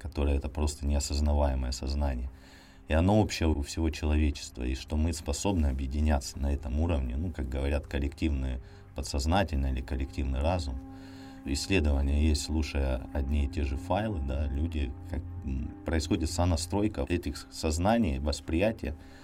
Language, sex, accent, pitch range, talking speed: Russian, male, native, 70-85 Hz, 130 wpm